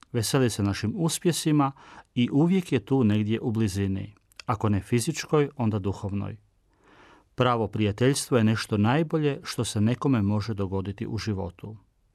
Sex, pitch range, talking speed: male, 105-135 Hz, 140 wpm